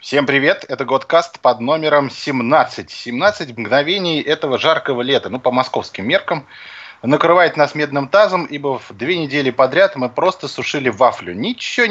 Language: Russian